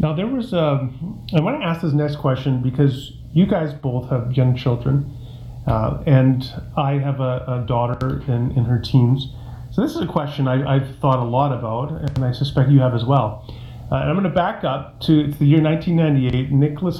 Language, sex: English, male